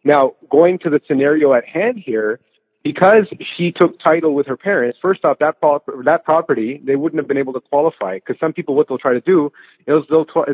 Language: English